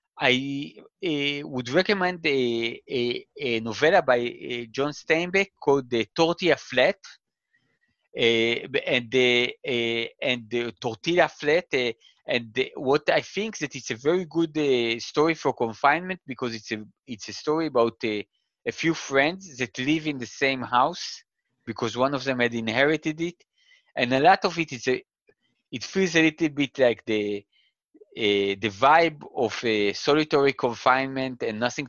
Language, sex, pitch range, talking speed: Slovak, male, 115-160 Hz, 175 wpm